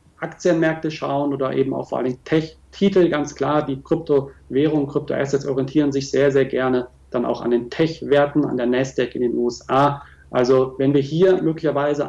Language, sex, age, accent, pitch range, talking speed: German, male, 40-59, German, 125-150 Hz, 170 wpm